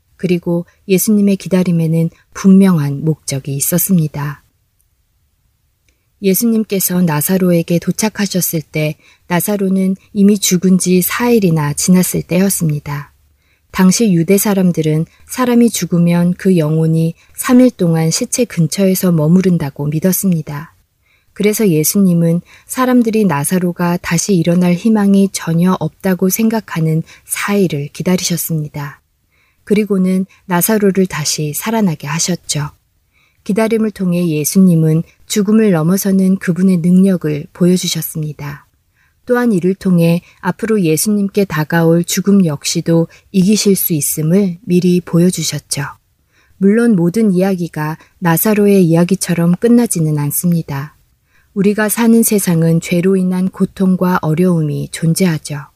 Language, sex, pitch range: Korean, female, 155-195 Hz